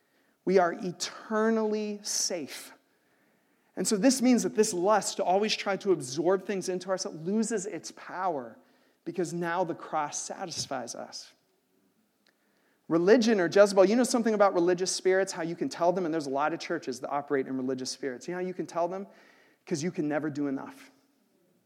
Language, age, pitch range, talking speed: English, 40-59, 145-185 Hz, 185 wpm